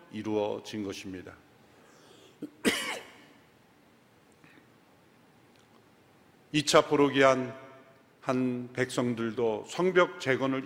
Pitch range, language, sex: 130-185 Hz, Korean, male